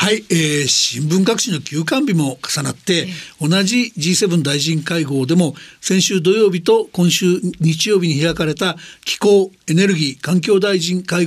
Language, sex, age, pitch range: Japanese, male, 60-79, 160-200 Hz